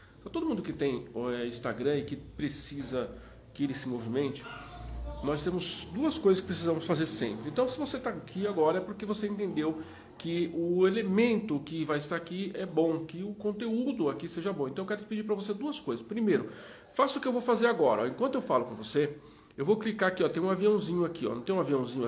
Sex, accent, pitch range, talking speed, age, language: male, Brazilian, 150-210 Hz, 215 wpm, 40-59, Portuguese